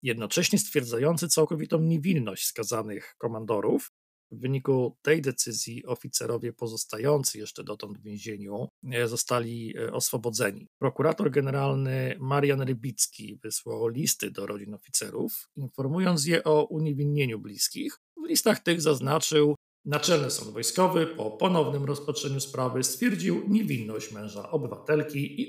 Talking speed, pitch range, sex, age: 115 wpm, 115-150 Hz, male, 40-59